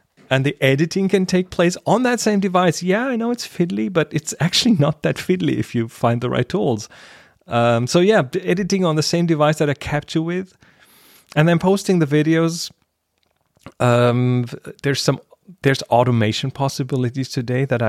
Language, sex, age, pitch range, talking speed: English, male, 30-49, 125-165 Hz, 180 wpm